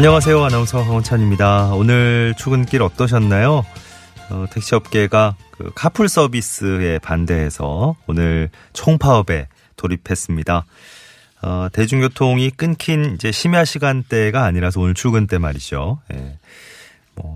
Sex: male